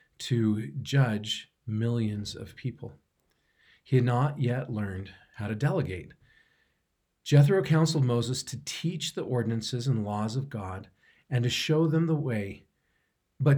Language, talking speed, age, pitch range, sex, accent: English, 135 wpm, 40-59, 110-140 Hz, male, American